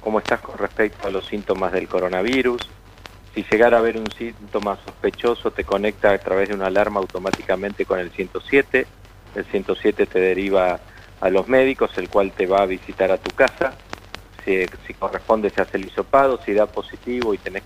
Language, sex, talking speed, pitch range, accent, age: Spanish, male, 185 wpm, 100-115 Hz, Argentinian, 40-59